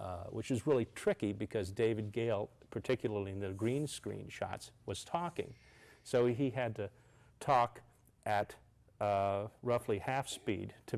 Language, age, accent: English, 40-59, American